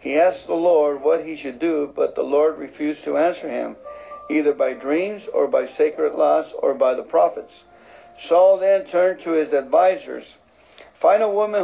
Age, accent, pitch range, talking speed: 60-79, American, 150-225 Hz, 180 wpm